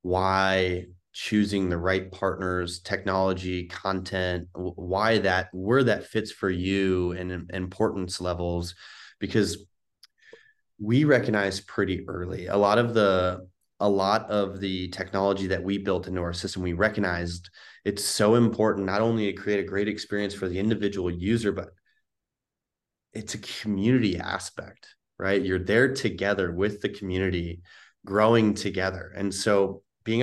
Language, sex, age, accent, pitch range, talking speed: English, male, 20-39, American, 90-110 Hz, 140 wpm